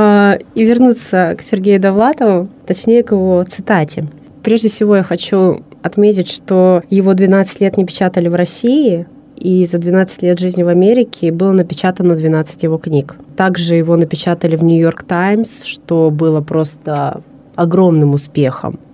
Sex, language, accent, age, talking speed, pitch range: female, Russian, native, 20-39, 145 wpm, 160-190 Hz